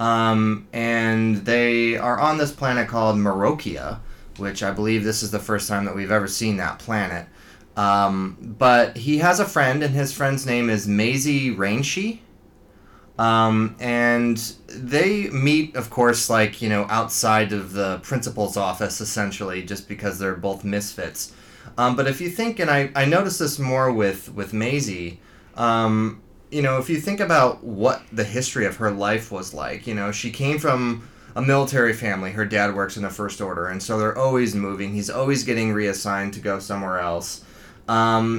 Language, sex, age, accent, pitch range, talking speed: English, male, 20-39, American, 100-120 Hz, 180 wpm